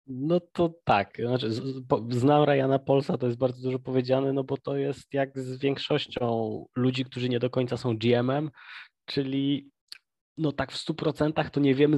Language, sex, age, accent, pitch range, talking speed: Polish, male, 20-39, native, 120-140 Hz, 175 wpm